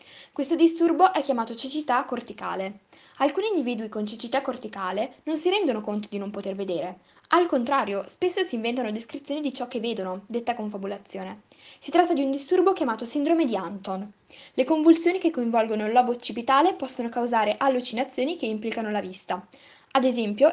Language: Italian